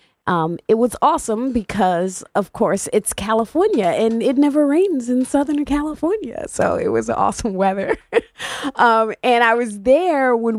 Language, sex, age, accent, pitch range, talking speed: English, female, 30-49, American, 190-265 Hz, 155 wpm